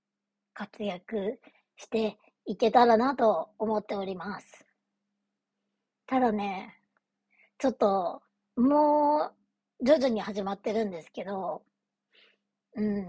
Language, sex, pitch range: Japanese, male, 205-260 Hz